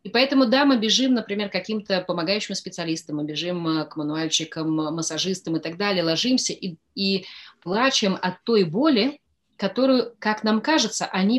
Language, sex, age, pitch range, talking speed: Russian, female, 30-49, 175-240 Hz, 160 wpm